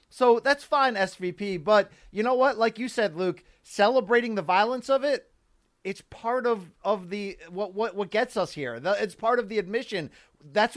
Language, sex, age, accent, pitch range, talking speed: English, male, 30-49, American, 205-250 Hz, 195 wpm